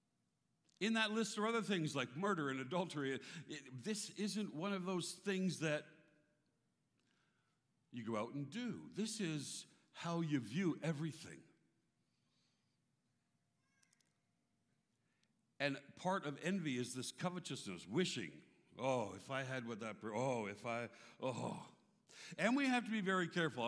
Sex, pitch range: male, 135-185 Hz